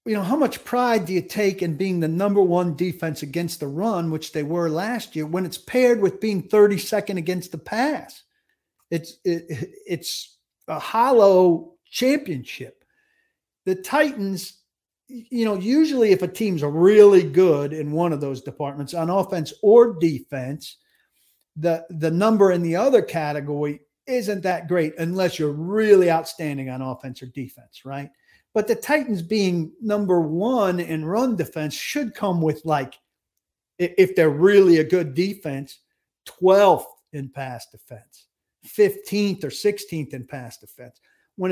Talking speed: 150 wpm